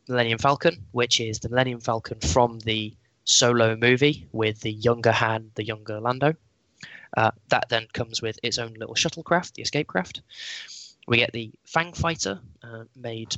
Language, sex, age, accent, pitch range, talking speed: English, male, 10-29, British, 110-130 Hz, 170 wpm